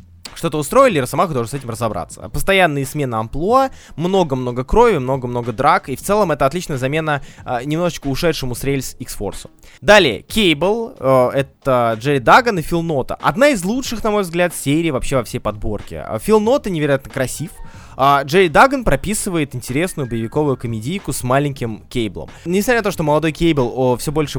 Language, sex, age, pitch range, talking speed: Russian, male, 20-39, 120-180 Hz, 165 wpm